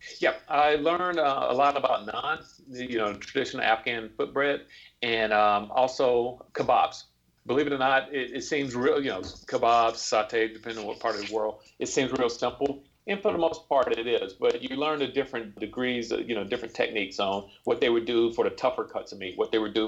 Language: English